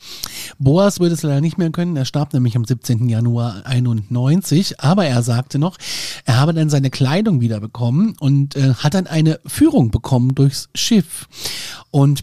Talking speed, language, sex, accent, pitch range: 165 wpm, German, male, German, 130-160 Hz